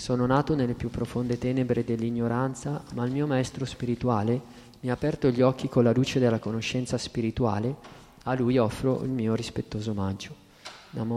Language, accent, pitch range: Italian, native, 120-135 Hz